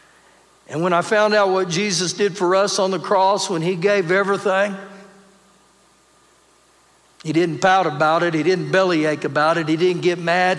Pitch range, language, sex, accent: 150-185 Hz, English, male, American